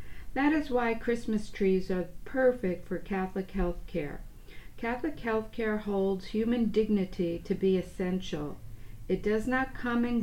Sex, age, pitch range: female, 50-69, 175-215 Hz